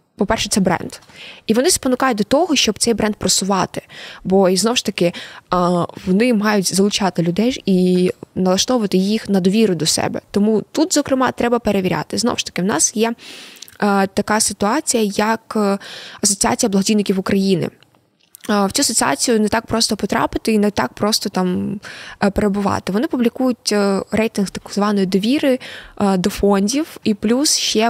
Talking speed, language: 150 wpm, Ukrainian